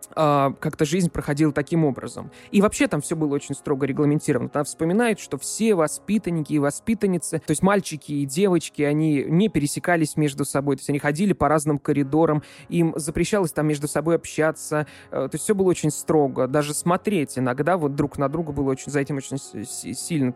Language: Russian